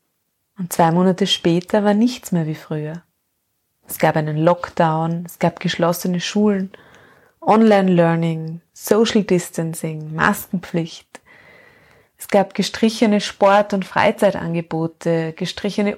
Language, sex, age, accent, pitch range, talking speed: German, female, 20-39, German, 175-210 Hz, 105 wpm